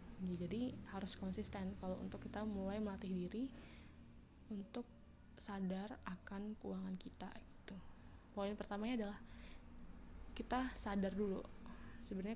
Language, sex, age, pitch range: Malay, female, 20-39, 175-210 Hz